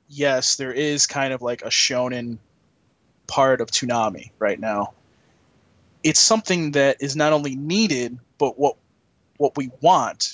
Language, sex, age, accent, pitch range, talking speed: English, male, 20-39, American, 130-165 Hz, 145 wpm